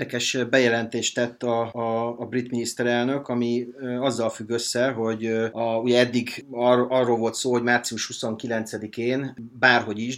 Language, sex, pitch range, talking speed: Hungarian, male, 105-125 Hz, 125 wpm